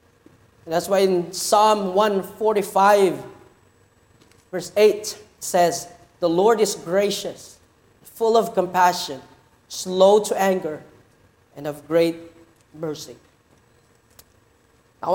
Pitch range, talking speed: 130-175 Hz, 90 wpm